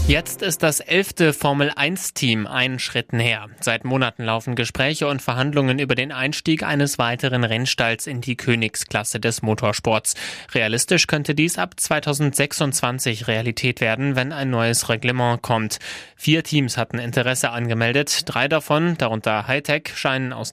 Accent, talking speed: German, 140 wpm